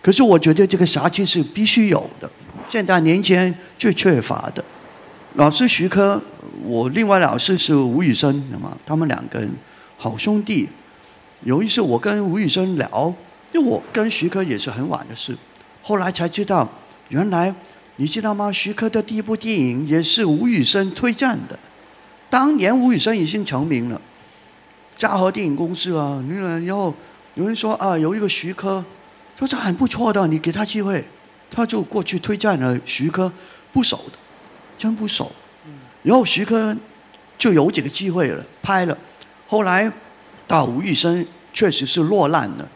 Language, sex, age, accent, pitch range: Chinese, male, 50-69, native, 155-210 Hz